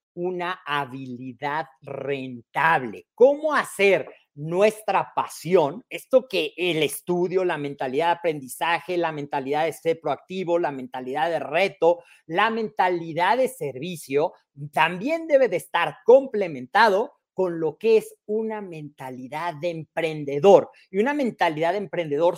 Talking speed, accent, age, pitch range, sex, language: 125 wpm, Mexican, 40-59, 150-210 Hz, male, Spanish